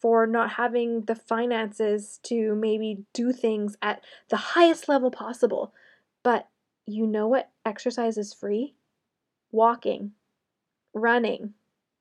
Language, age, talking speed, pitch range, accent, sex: English, 10-29, 115 wpm, 220-265 Hz, American, female